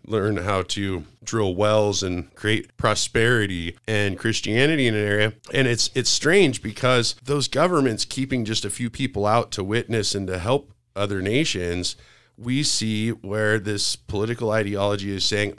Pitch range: 100-125 Hz